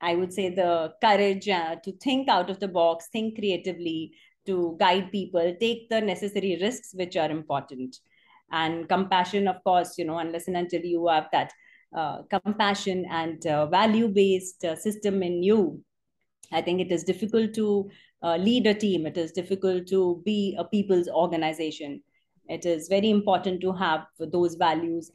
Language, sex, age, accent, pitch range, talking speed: English, female, 30-49, Indian, 165-205 Hz, 170 wpm